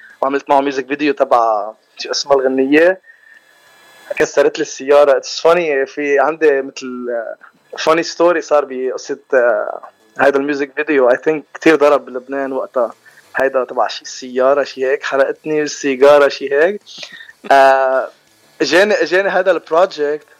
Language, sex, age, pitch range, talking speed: Arabic, male, 20-39, 140-190 Hz, 130 wpm